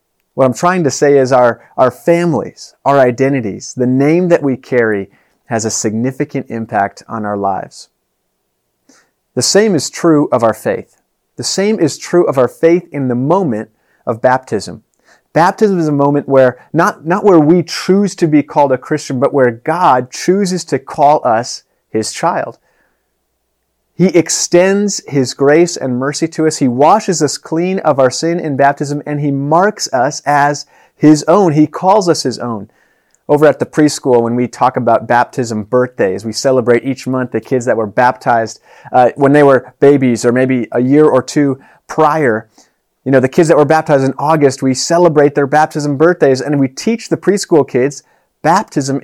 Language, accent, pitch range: English, American, 125-160 Hz